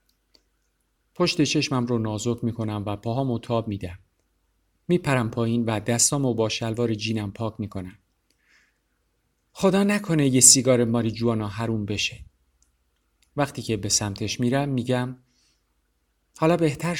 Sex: male